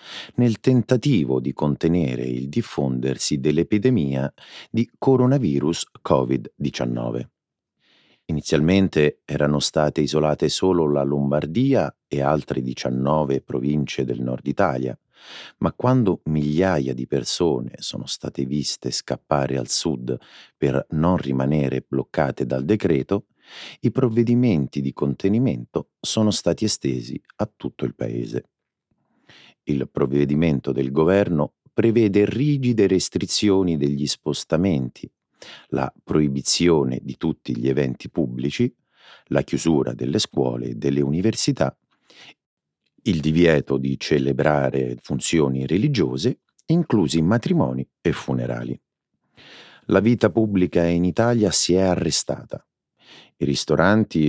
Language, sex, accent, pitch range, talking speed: Italian, male, native, 70-100 Hz, 105 wpm